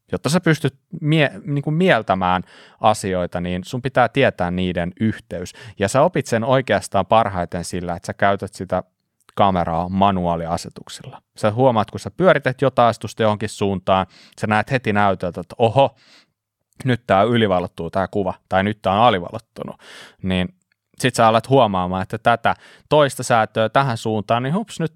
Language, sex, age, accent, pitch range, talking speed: Finnish, male, 30-49, native, 95-130 Hz, 160 wpm